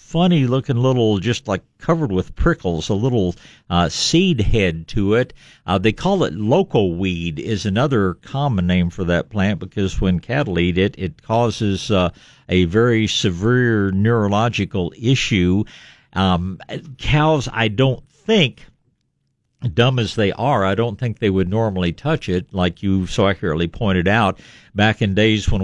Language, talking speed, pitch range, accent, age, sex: English, 155 wpm, 95-125 Hz, American, 60-79, male